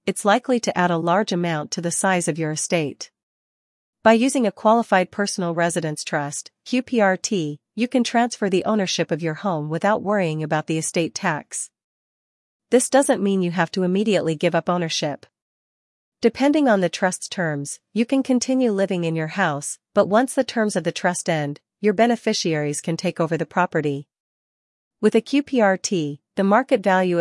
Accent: American